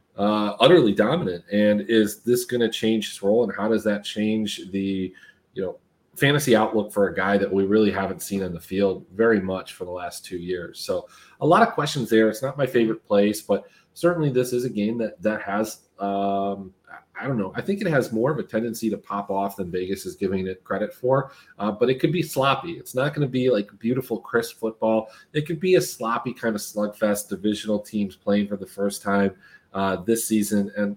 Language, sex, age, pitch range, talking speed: English, male, 30-49, 100-125 Hz, 225 wpm